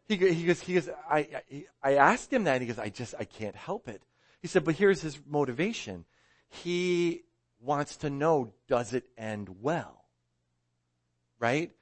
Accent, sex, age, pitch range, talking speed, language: American, male, 40-59, 110-150 Hz, 160 wpm, English